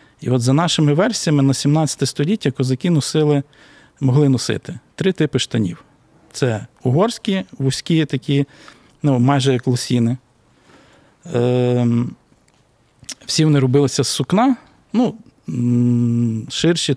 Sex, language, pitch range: male, Ukrainian, 125-150 Hz